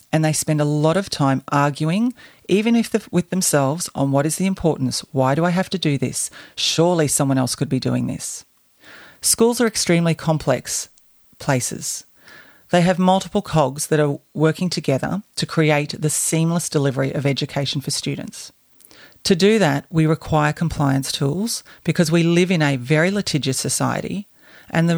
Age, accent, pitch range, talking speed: 40-59, Australian, 140-180 Hz, 170 wpm